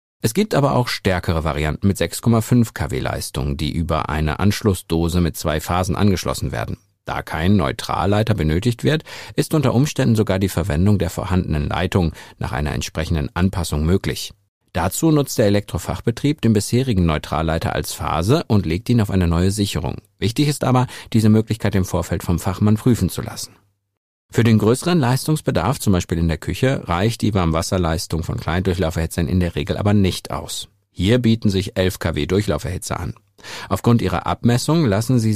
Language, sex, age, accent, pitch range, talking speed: German, male, 50-69, German, 85-115 Hz, 165 wpm